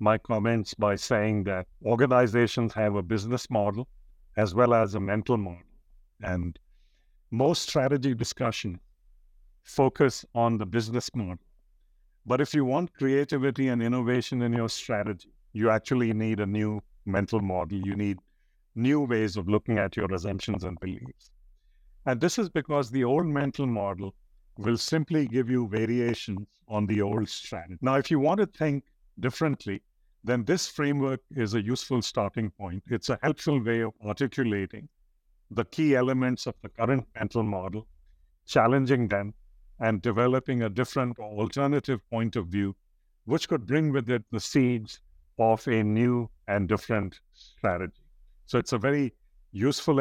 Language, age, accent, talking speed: English, 50-69, Indian, 150 wpm